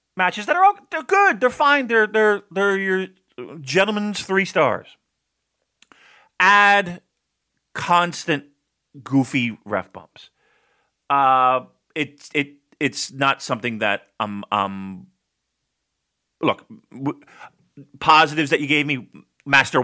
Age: 40-59